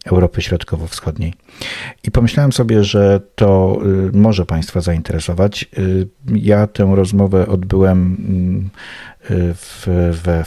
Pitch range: 85-100 Hz